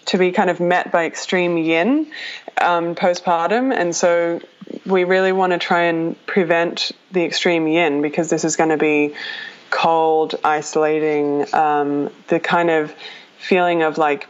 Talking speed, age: 155 wpm, 20-39